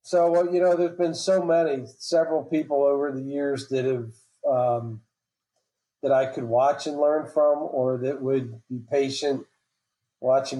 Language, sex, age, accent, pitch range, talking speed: English, male, 40-59, American, 135-155 Hz, 165 wpm